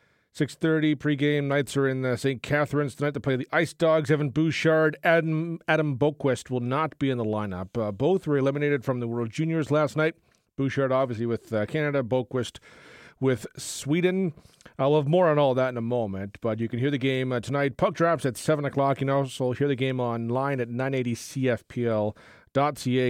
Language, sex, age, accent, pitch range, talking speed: English, male, 40-59, American, 125-160 Hz, 190 wpm